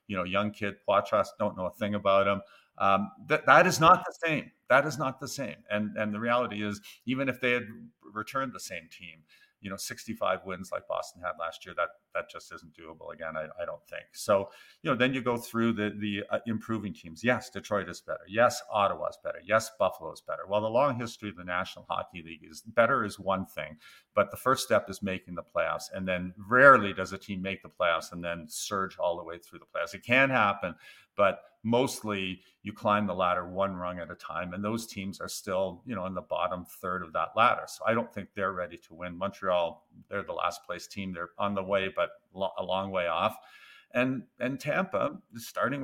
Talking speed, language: 230 wpm, English